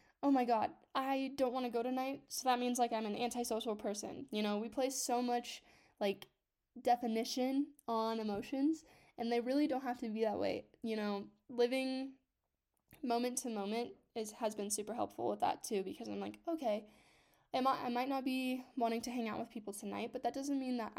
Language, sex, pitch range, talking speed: English, female, 220-265 Hz, 200 wpm